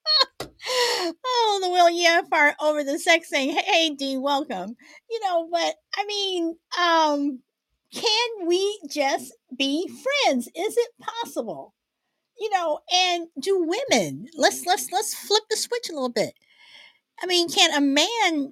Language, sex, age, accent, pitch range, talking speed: English, female, 50-69, American, 230-330 Hz, 145 wpm